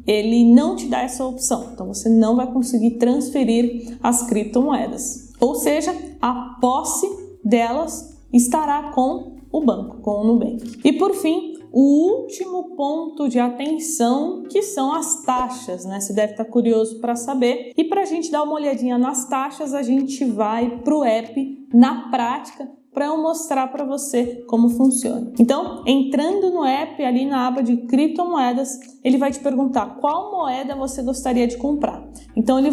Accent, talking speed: Brazilian, 165 wpm